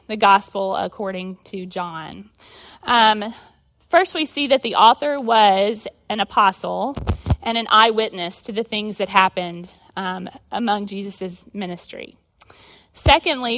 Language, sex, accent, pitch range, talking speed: English, female, American, 195-240 Hz, 125 wpm